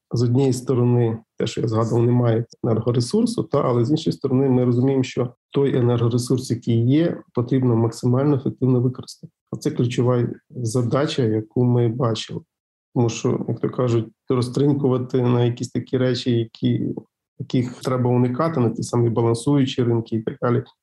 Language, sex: Ukrainian, male